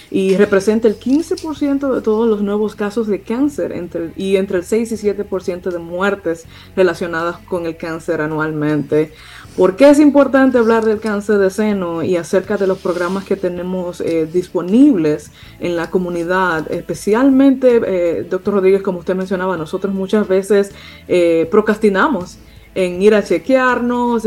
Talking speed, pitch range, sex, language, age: 155 wpm, 180-215 Hz, female, Spanish, 20-39